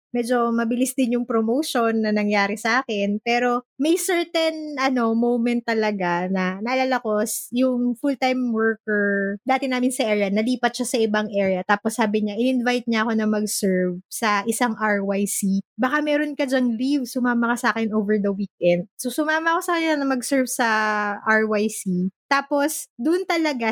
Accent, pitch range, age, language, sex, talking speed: Filipino, 205-255 Hz, 20-39, English, female, 160 wpm